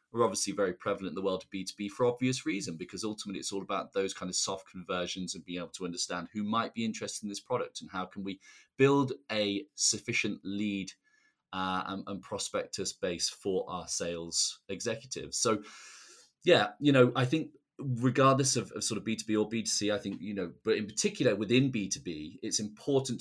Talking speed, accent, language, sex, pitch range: 195 wpm, British, English, male, 95-120 Hz